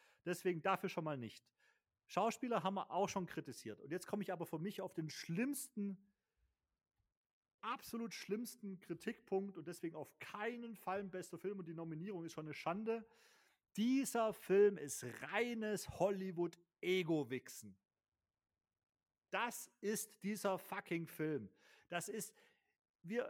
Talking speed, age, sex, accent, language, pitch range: 135 wpm, 40-59, male, German, German, 190-240 Hz